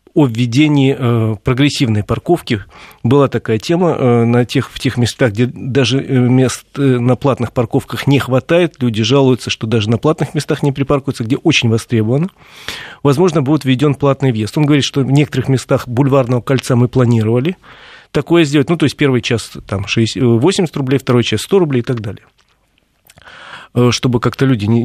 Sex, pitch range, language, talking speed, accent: male, 120-140 Hz, Russian, 165 wpm, native